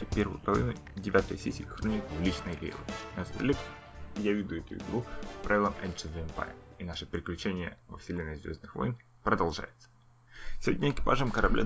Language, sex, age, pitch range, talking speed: Russian, male, 20-39, 90-120 Hz, 130 wpm